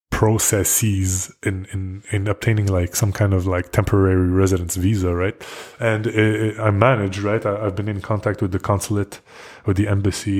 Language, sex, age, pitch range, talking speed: English, male, 20-39, 95-110 Hz, 150 wpm